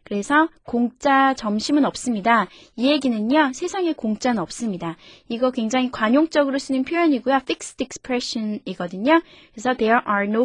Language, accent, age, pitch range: Korean, native, 20-39, 215-290 Hz